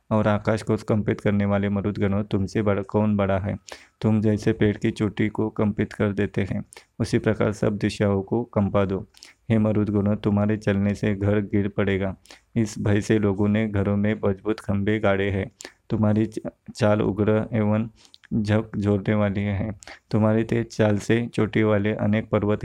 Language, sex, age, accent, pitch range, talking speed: Hindi, male, 20-39, native, 100-110 Hz, 165 wpm